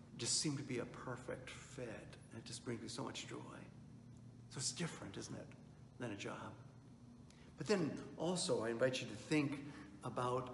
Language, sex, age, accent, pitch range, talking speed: English, male, 60-79, American, 125-175 Hz, 180 wpm